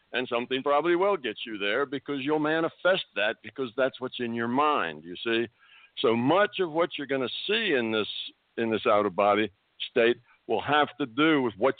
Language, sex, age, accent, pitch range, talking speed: English, male, 60-79, American, 115-145 Hz, 200 wpm